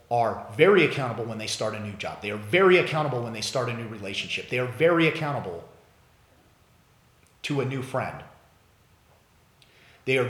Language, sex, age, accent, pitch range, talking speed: English, male, 30-49, American, 105-130 Hz, 170 wpm